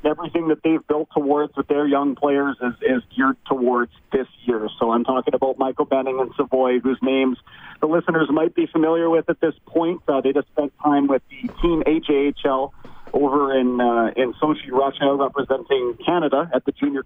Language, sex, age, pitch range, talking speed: English, male, 40-59, 135-155 Hz, 190 wpm